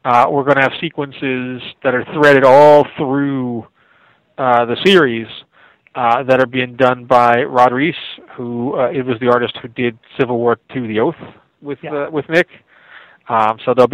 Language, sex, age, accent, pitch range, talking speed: English, male, 40-59, American, 120-140 Hz, 180 wpm